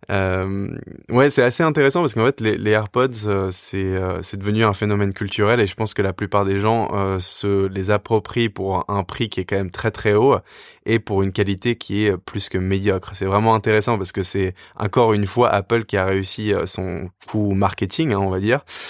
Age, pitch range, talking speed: 20-39, 95-115 Hz, 220 wpm